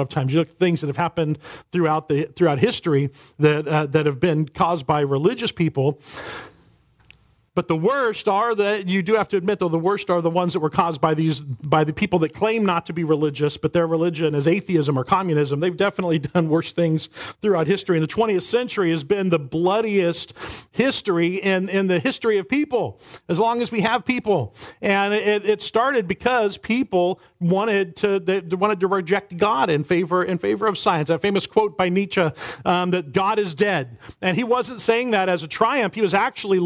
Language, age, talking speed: English, 40-59, 210 wpm